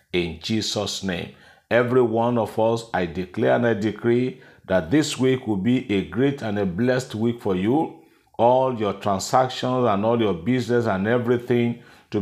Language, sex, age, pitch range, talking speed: English, male, 50-69, 100-125 Hz, 170 wpm